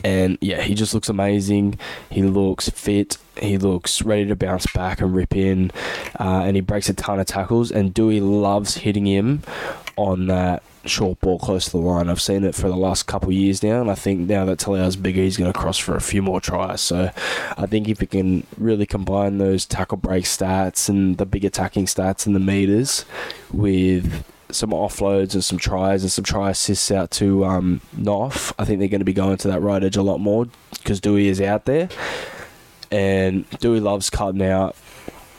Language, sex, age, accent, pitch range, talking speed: English, male, 10-29, Australian, 95-105 Hz, 210 wpm